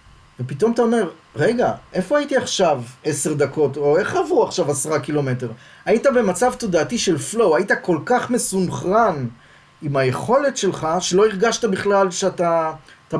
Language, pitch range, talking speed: Hebrew, 140-220 Hz, 140 wpm